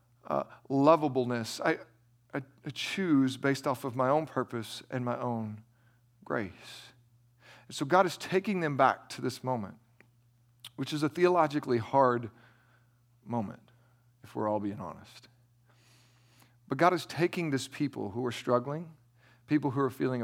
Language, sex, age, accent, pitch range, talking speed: English, male, 40-59, American, 120-155 Hz, 145 wpm